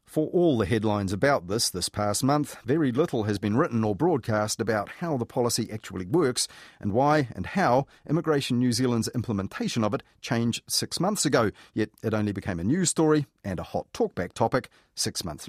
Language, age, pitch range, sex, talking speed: English, 40-59, 105-135 Hz, male, 195 wpm